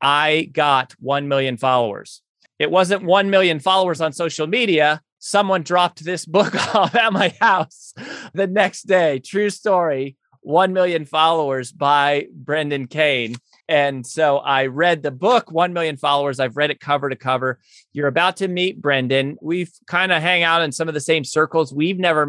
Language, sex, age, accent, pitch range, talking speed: English, male, 30-49, American, 135-170 Hz, 175 wpm